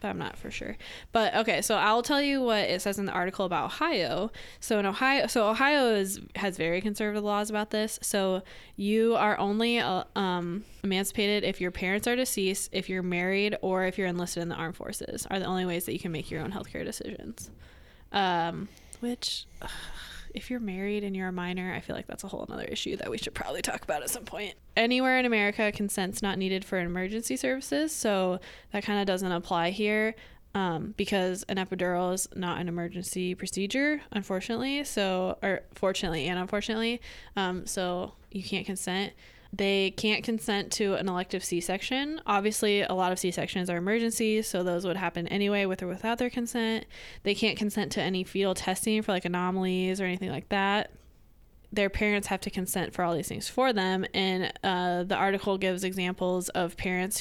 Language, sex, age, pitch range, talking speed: English, female, 10-29, 185-215 Hz, 195 wpm